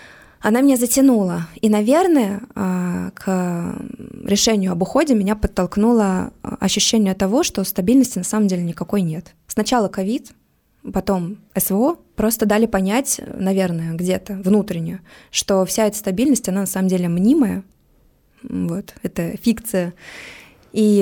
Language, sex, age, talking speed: Russian, female, 20-39, 125 wpm